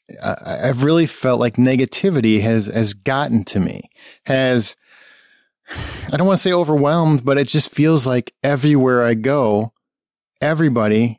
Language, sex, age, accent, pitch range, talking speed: English, male, 30-49, American, 115-140 Hz, 140 wpm